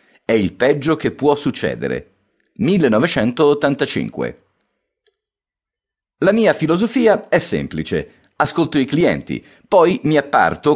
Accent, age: native, 40-59